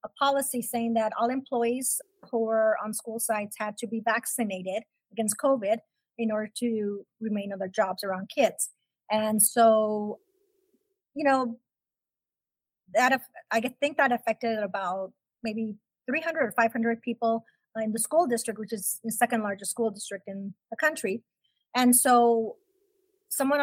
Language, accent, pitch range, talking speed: English, American, 210-265 Hz, 145 wpm